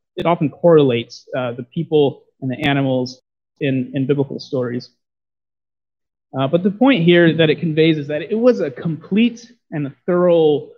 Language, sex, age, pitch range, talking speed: English, male, 30-49, 140-205 Hz, 165 wpm